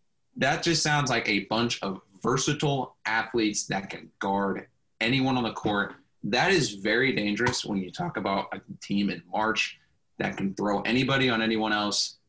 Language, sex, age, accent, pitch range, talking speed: English, male, 20-39, American, 100-130 Hz, 170 wpm